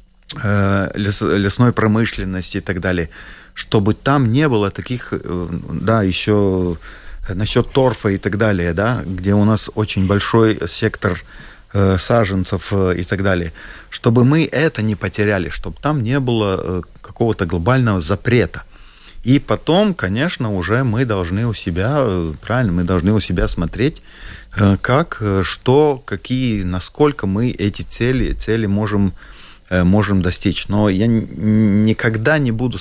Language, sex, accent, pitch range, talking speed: Russian, male, native, 90-115 Hz, 130 wpm